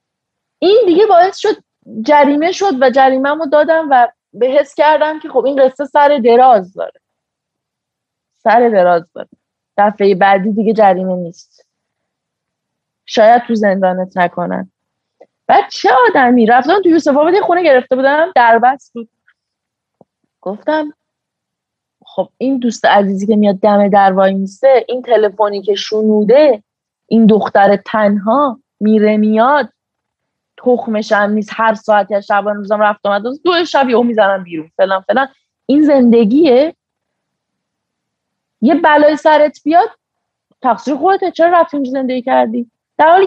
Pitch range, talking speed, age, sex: 215-320 Hz, 125 wpm, 30-49, female